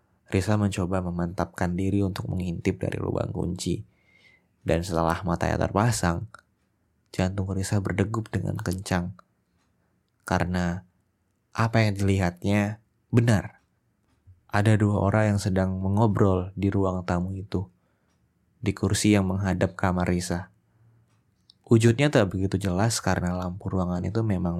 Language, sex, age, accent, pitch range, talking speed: Indonesian, male, 20-39, native, 90-105 Hz, 115 wpm